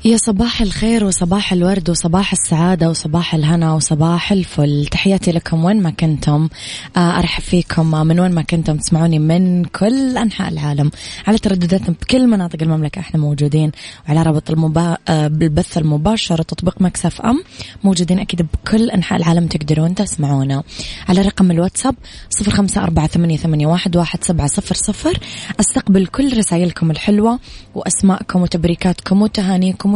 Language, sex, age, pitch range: Arabic, female, 20-39, 160-195 Hz